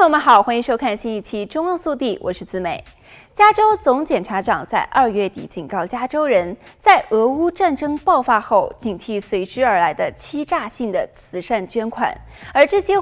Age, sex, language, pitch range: 20-39, female, Chinese, 215-345 Hz